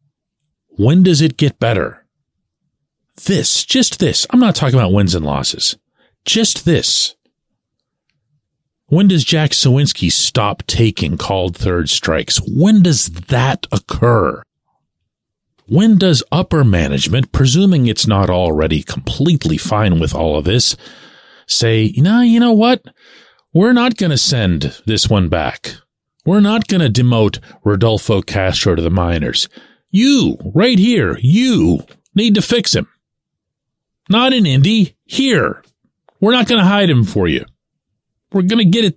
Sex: male